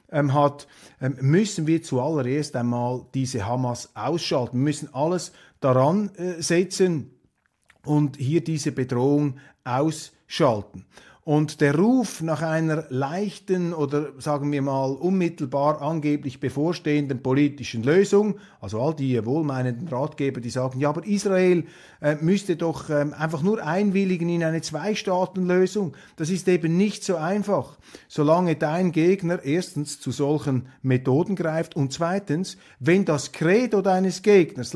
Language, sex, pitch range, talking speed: German, male, 140-185 Hz, 130 wpm